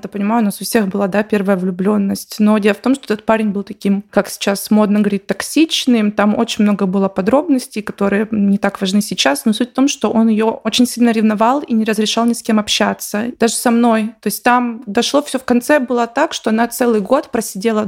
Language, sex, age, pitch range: Russian, female, 20-39, 205-235 Hz